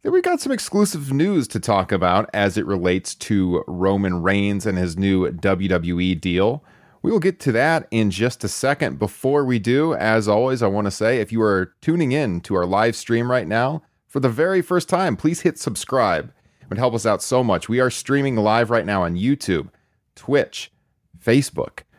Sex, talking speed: male, 200 wpm